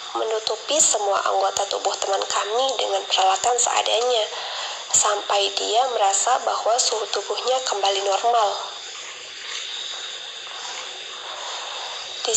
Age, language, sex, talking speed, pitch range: 20-39, Indonesian, female, 85 wpm, 205-260 Hz